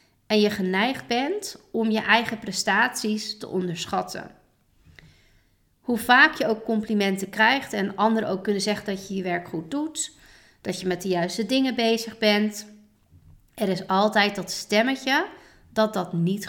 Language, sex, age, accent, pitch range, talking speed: Dutch, female, 40-59, Dutch, 185-230 Hz, 155 wpm